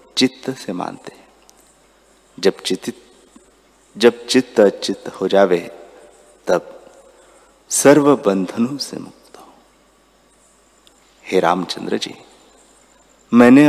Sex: male